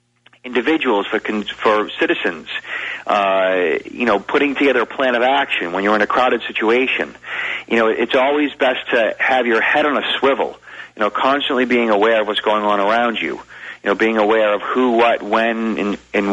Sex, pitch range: male, 110-130 Hz